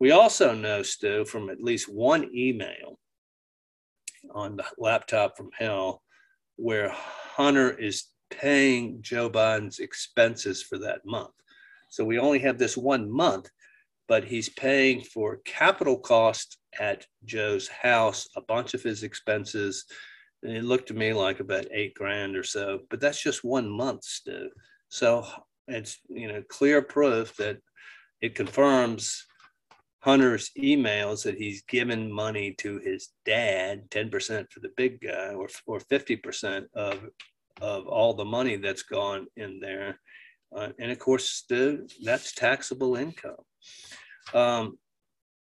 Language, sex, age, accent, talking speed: English, male, 50-69, American, 140 wpm